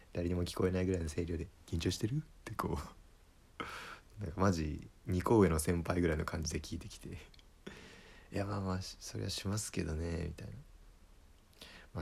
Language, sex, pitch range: Japanese, male, 85-105 Hz